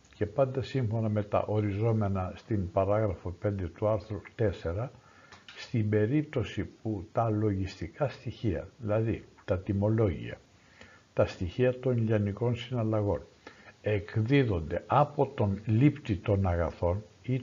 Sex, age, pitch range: male, 60-79, 100-125 Hz